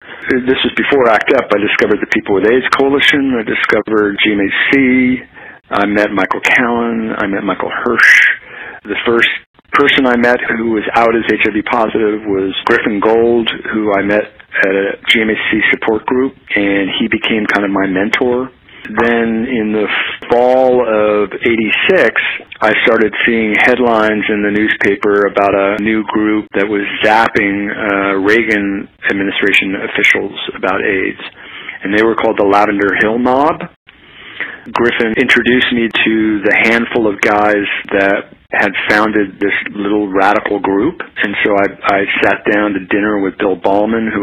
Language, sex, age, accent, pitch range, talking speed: English, male, 50-69, American, 100-115 Hz, 155 wpm